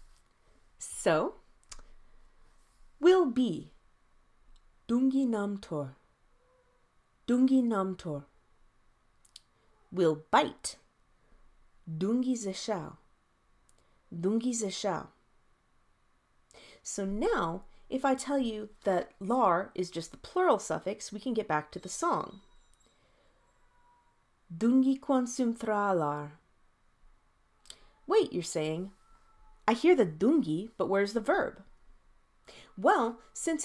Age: 30-49